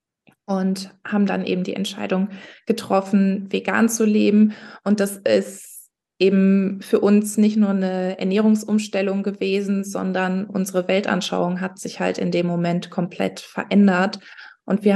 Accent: German